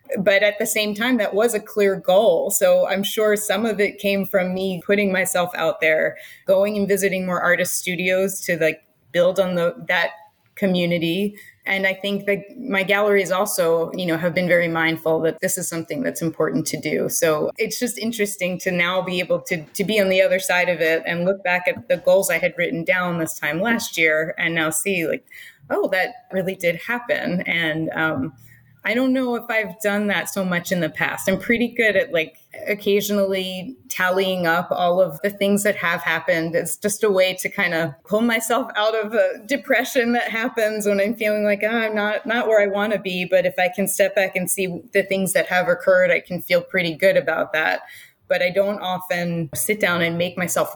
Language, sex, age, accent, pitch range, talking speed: English, female, 20-39, American, 175-210 Hz, 215 wpm